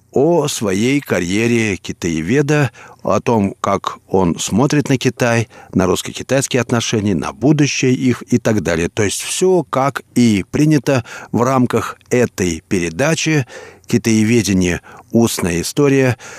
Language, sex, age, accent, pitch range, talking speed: Russian, male, 50-69, native, 105-140 Hz, 120 wpm